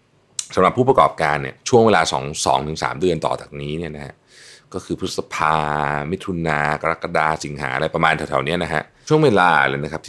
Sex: male